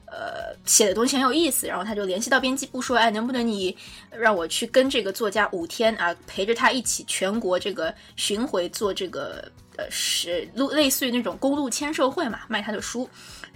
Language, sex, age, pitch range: Chinese, female, 20-39, 200-275 Hz